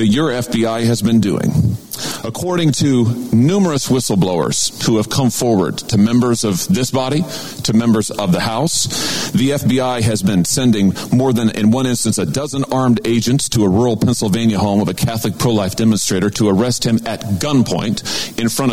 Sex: male